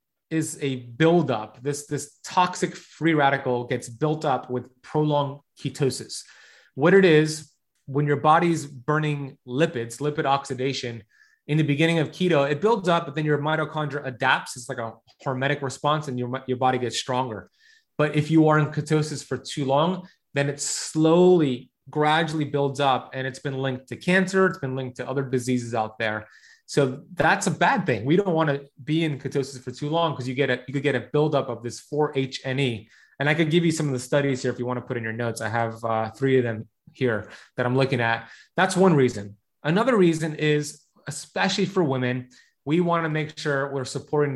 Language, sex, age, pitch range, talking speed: English, male, 30-49, 125-155 Hz, 200 wpm